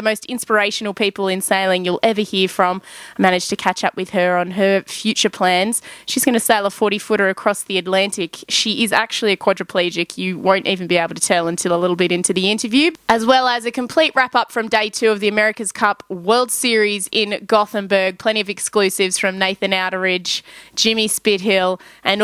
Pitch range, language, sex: 195-240 Hz, English, female